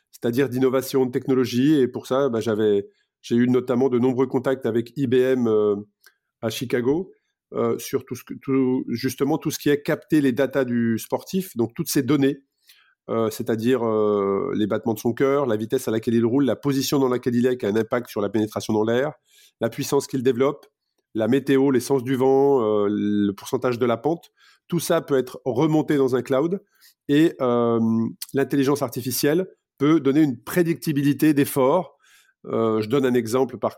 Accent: French